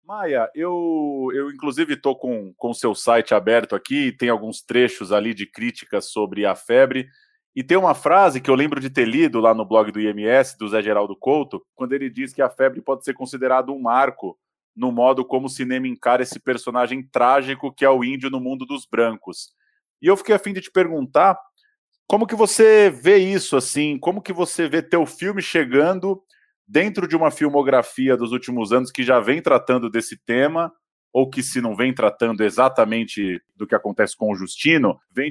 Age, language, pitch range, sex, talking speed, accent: 20-39, Portuguese, 120-175 Hz, male, 195 wpm, Brazilian